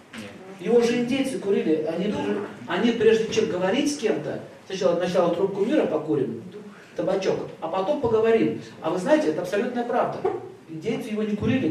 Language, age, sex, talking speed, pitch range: Russian, 40-59, male, 165 wpm, 160-215 Hz